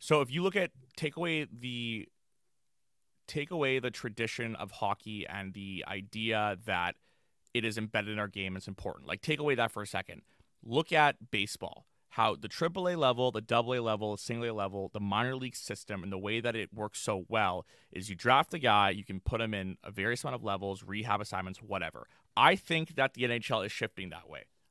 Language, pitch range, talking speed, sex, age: English, 105-125 Hz, 215 wpm, male, 30-49